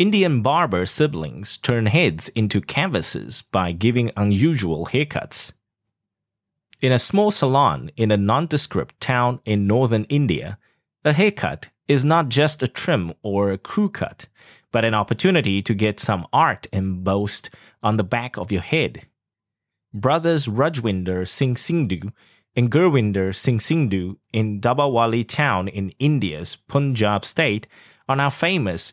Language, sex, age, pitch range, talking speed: English, male, 20-39, 100-145 Hz, 135 wpm